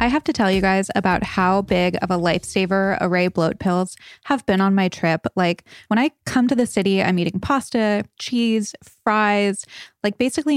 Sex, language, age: female, English, 20-39